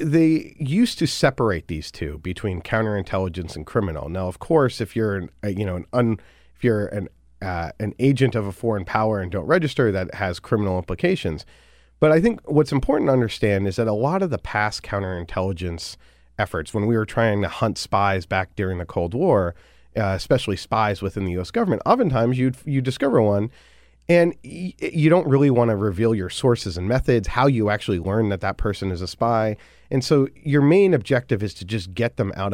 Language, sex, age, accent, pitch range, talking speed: English, male, 30-49, American, 90-115 Hz, 200 wpm